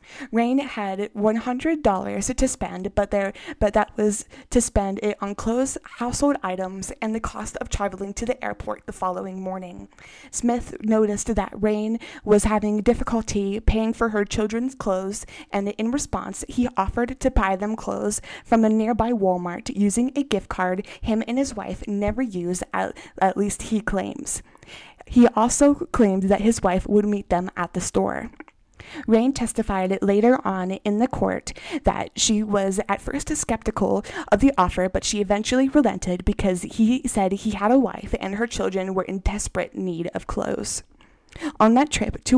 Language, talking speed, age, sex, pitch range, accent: English, 170 wpm, 20-39, female, 195-240 Hz, American